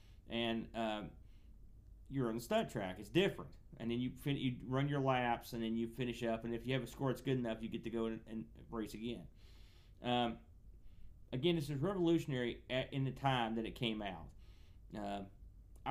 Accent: American